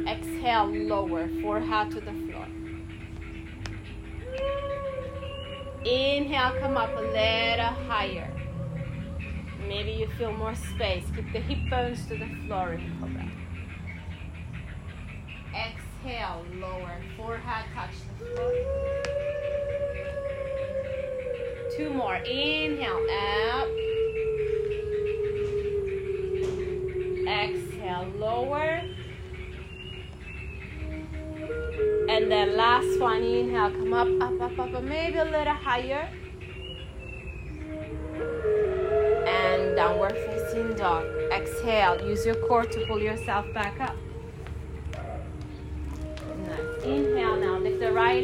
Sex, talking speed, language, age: female, 85 wpm, English, 30-49